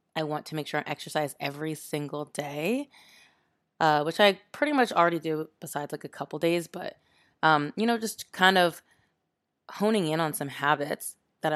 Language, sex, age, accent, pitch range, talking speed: English, female, 20-39, American, 145-170 Hz, 180 wpm